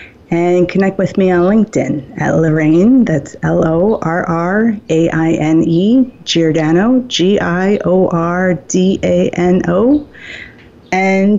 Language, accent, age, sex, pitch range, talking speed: English, American, 30-49, female, 160-190 Hz, 70 wpm